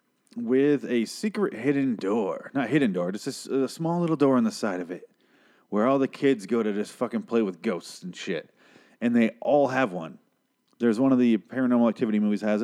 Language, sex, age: English, male, 30-49